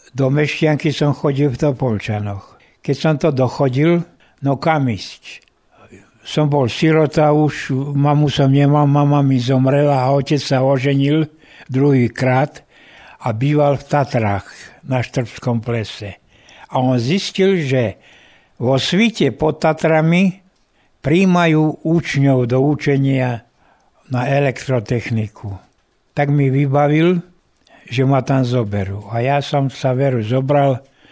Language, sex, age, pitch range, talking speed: Slovak, male, 60-79, 125-155 Hz, 120 wpm